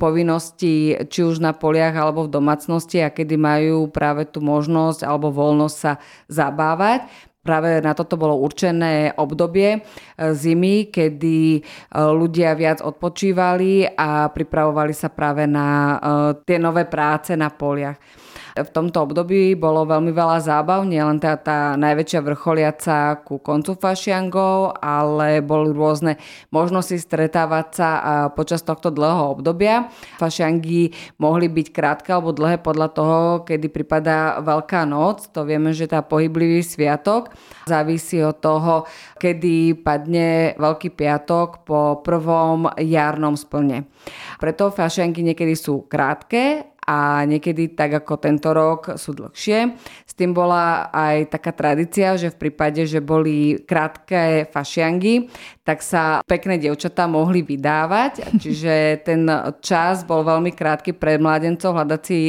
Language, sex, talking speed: Slovak, female, 130 wpm